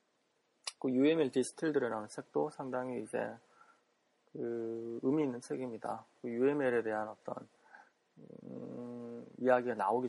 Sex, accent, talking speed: male, Korean, 100 wpm